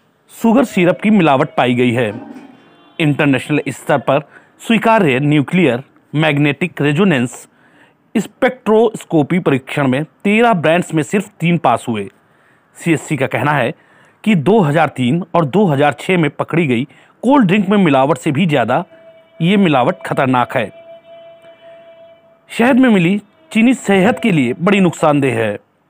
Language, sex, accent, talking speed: Hindi, male, native, 130 wpm